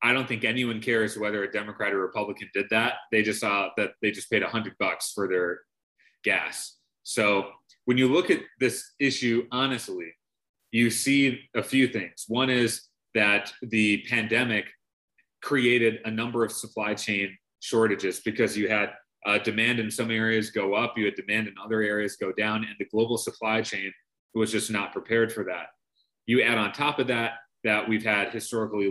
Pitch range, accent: 105-120 Hz, American